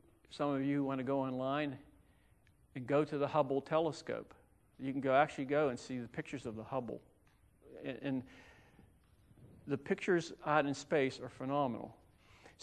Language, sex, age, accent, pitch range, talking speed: English, male, 50-69, American, 135-190 Hz, 160 wpm